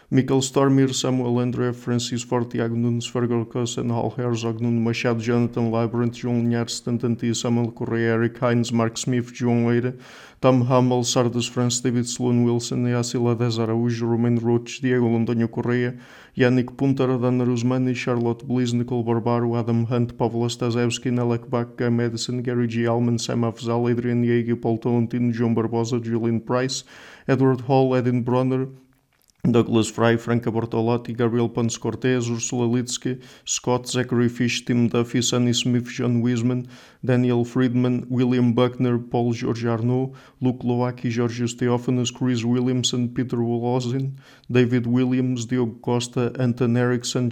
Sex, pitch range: male, 120-125 Hz